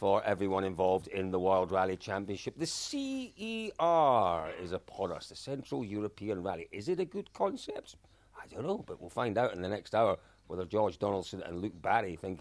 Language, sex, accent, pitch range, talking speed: English, male, British, 95-140 Hz, 195 wpm